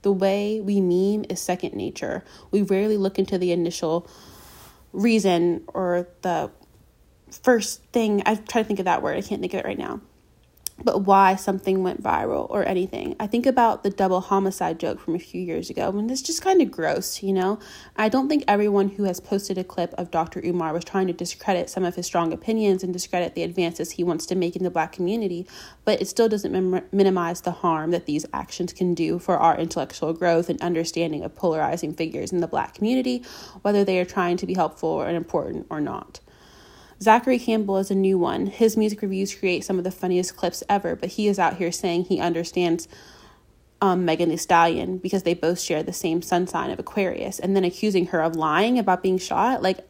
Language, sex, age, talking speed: English, female, 20-39, 215 wpm